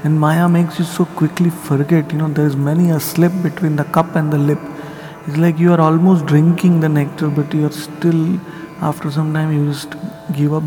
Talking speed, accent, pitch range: 220 wpm, Indian, 155-180 Hz